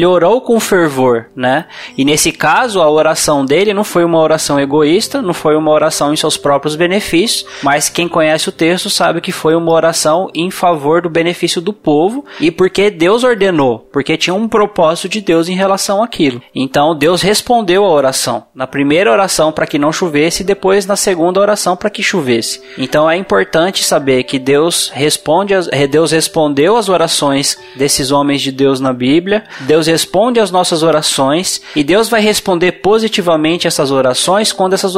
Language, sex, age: Portuguese, male, 20-39